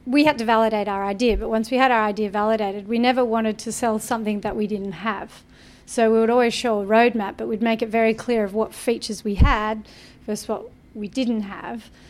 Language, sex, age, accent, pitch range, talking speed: English, female, 30-49, Australian, 210-235 Hz, 230 wpm